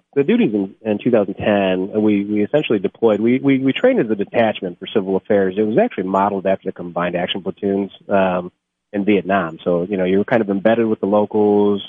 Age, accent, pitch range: 30-49, American, 90-100 Hz